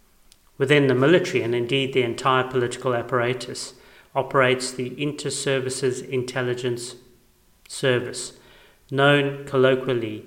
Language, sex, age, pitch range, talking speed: English, male, 40-59, 125-140 Hz, 95 wpm